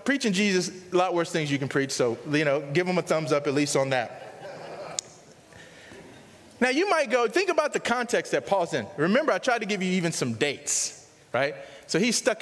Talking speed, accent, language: 215 wpm, American, English